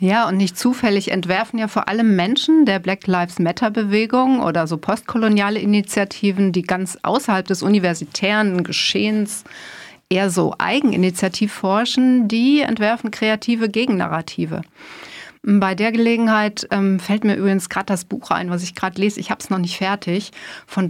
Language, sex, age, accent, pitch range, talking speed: German, female, 40-59, German, 180-220 Hz, 155 wpm